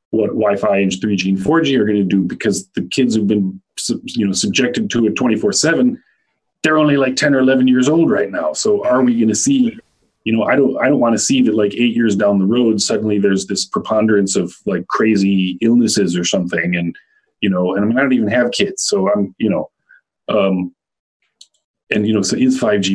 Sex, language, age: male, English, 30-49